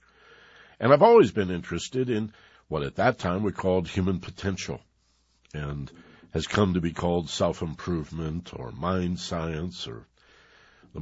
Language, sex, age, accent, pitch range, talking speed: English, male, 60-79, American, 80-100 Hz, 140 wpm